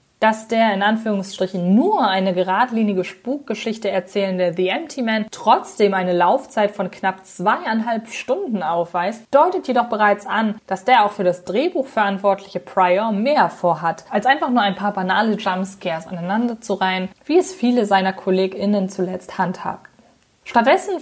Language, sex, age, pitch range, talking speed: German, female, 20-39, 190-235 Hz, 145 wpm